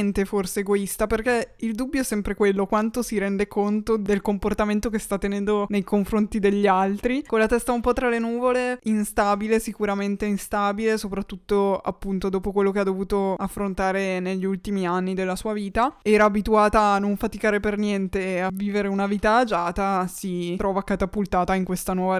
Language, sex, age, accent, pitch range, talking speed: Italian, female, 20-39, native, 195-220 Hz, 175 wpm